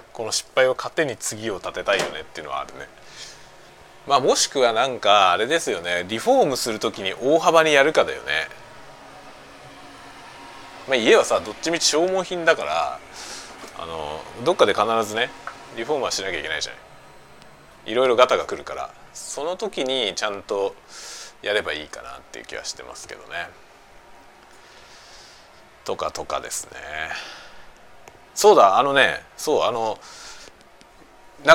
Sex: male